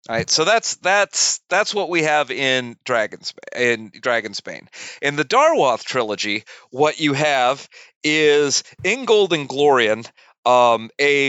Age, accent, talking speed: 40-59, American, 145 wpm